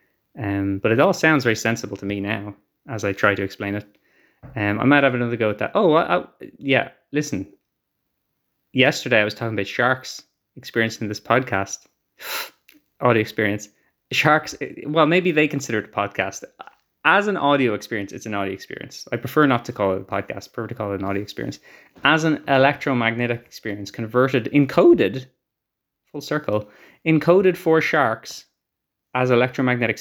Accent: Irish